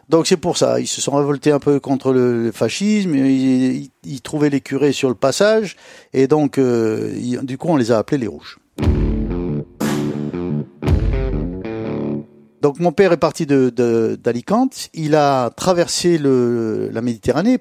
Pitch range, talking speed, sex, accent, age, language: 125-165 Hz, 165 wpm, male, French, 50-69, French